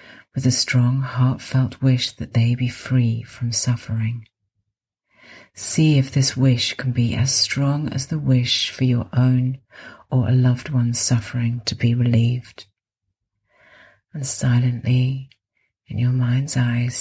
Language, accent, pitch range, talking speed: English, British, 110-125 Hz, 140 wpm